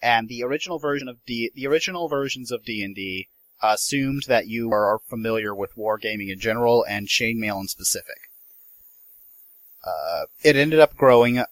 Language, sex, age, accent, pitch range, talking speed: English, male, 30-49, American, 105-140 Hz, 150 wpm